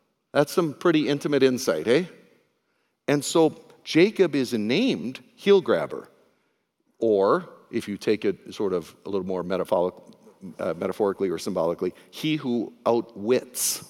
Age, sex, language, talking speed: 60-79, male, English, 125 wpm